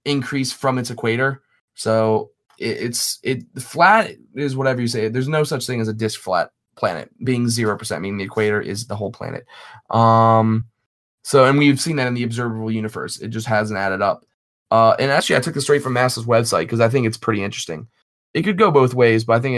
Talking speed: 220 wpm